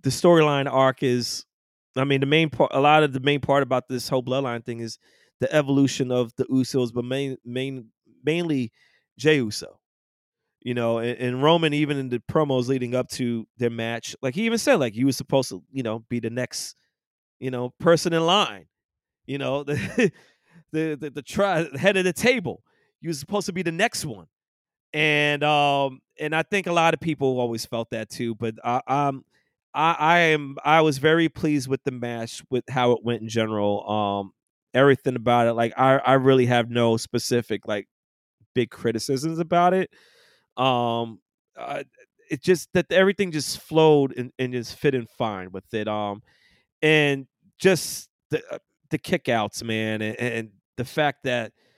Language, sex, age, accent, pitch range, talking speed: English, male, 30-49, American, 120-155 Hz, 185 wpm